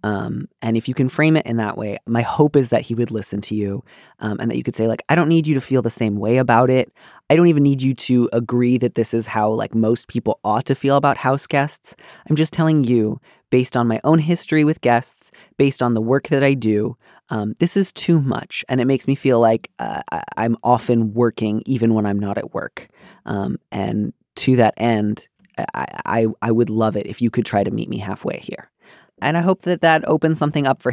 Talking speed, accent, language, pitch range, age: 245 wpm, American, English, 115-150 Hz, 20-39